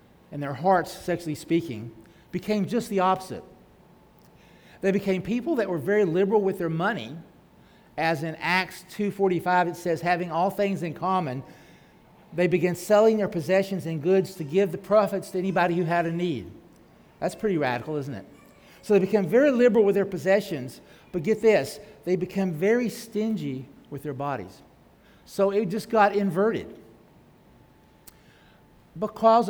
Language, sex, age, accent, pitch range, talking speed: English, male, 50-69, American, 160-200 Hz, 155 wpm